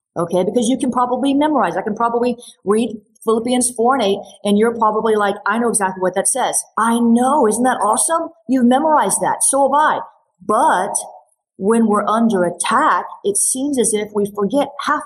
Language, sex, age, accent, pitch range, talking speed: English, female, 40-59, American, 195-250 Hz, 185 wpm